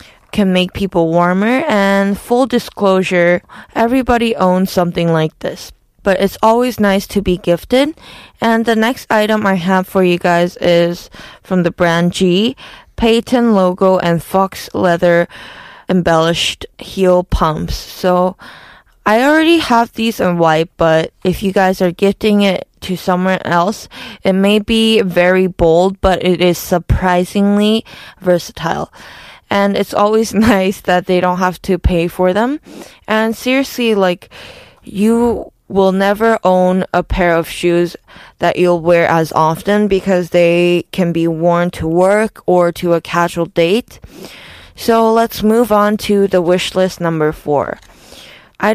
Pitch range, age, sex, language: 175-215 Hz, 20-39, female, Korean